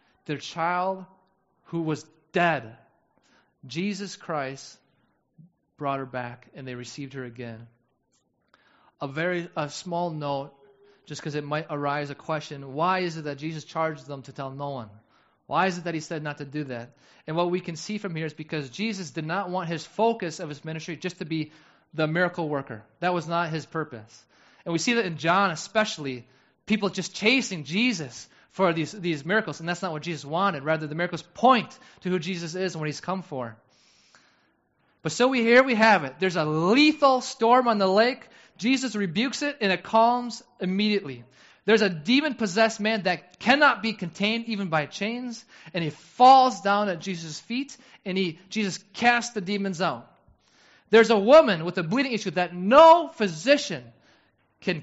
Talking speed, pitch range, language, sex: 185 wpm, 155-215 Hz, English, male